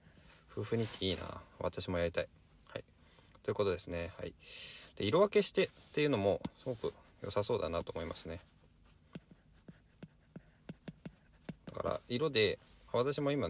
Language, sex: Japanese, male